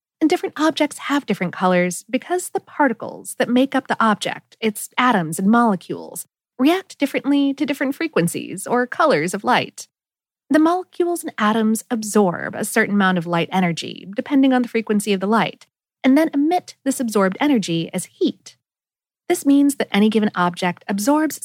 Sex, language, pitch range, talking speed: female, English, 205-300 Hz, 170 wpm